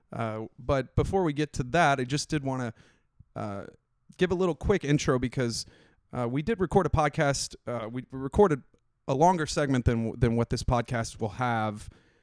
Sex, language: male, English